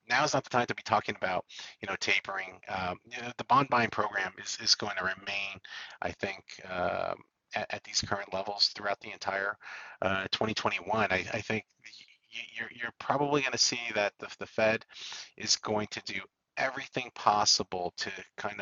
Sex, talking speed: male, 190 wpm